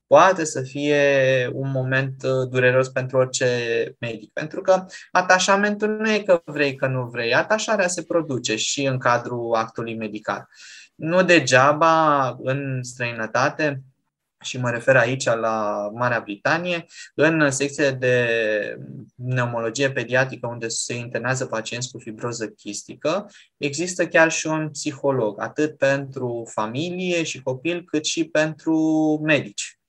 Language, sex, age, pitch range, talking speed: Romanian, male, 20-39, 120-155 Hz, 130 wpm